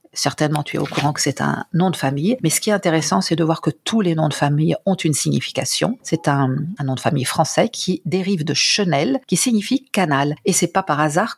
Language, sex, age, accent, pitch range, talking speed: French, female, 50-69, French, 145-190 Hz, 250 wpm